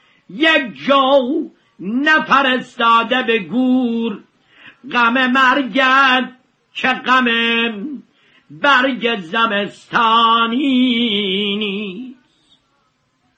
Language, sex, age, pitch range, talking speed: Persian, male, 50-69, 230-265 Hz, 50 wpm